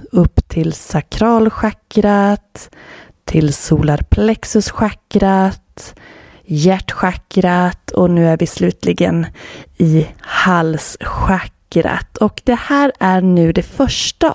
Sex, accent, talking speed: female, native, 85 wpm